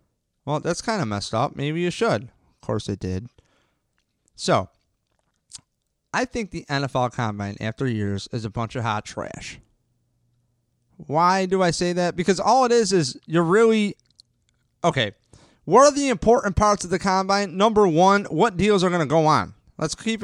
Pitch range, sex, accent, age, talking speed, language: 120-180 Hz, male, American, 30-49, 175 wpm, English